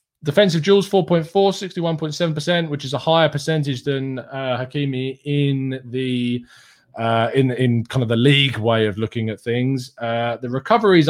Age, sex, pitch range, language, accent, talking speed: 20-39, male, 120-165 Hz, English, British, 155 wpm